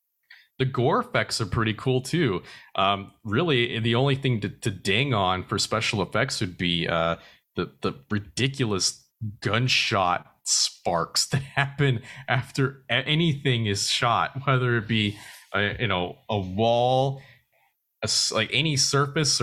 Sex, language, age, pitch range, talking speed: male, English, 30-49, 100-135 Hz, 140 wpm